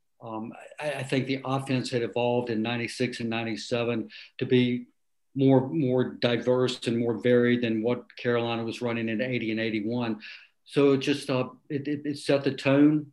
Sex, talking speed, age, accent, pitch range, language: male, 185 wpm, 60-79, American, 120-135 Hz, English